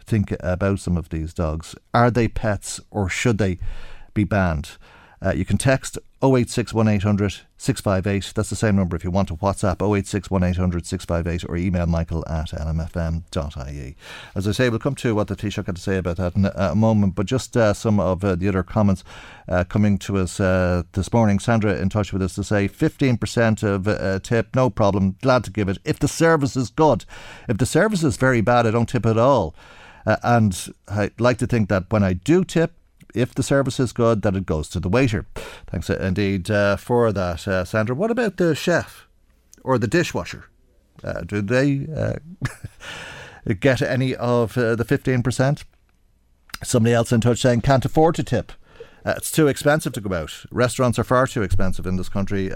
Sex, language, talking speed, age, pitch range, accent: male, English, 195 wpm, 50-69, 95-125 Hz, Irish